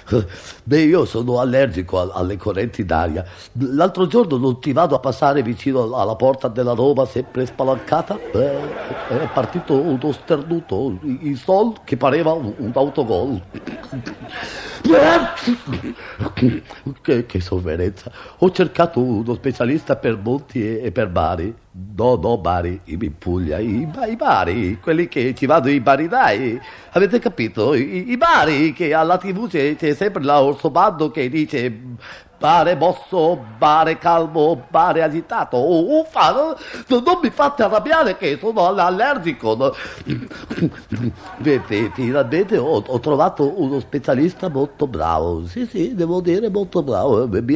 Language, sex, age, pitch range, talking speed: Italian, male, 50-69, 115-170 Hz, 140 wpm